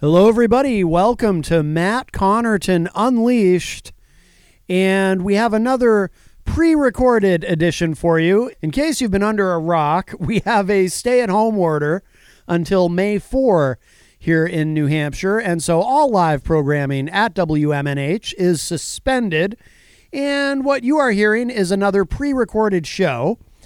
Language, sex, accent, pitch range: English, male, American, 165-210 Hz